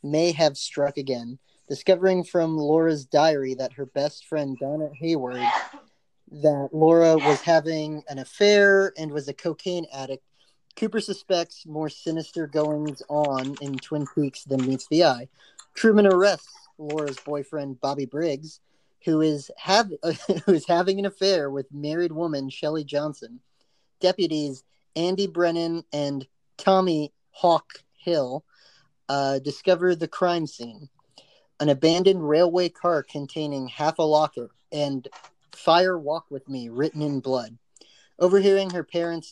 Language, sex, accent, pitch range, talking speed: English, male, American, 140-170 Hz, 135 wpm